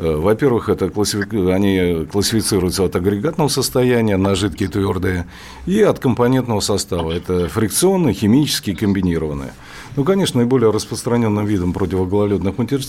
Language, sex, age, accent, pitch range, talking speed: Russian, male, 40-59, native, 90-125 Hz, 115 wpm